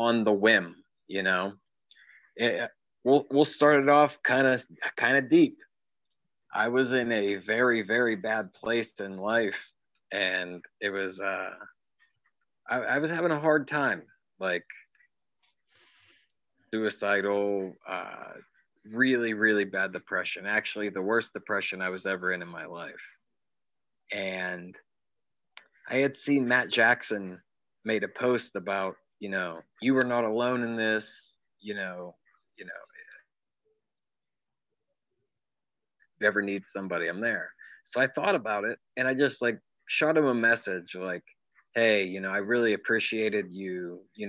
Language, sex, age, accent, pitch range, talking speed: English, male, 30-49, American, 100-125 Hz, 140 wpm